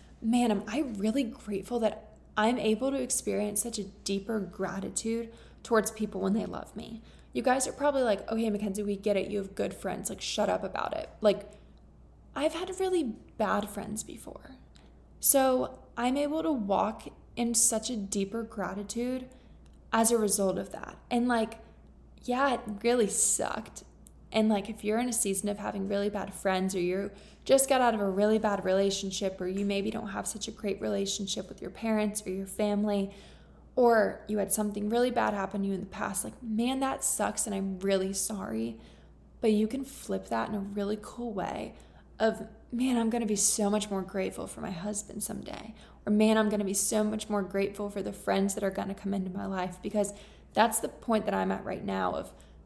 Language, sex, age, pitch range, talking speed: English, female, 20-39, 195-230 Hz, 200 wpm